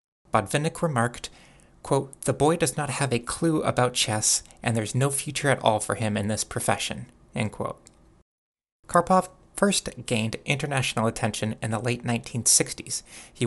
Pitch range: 110-140 Hz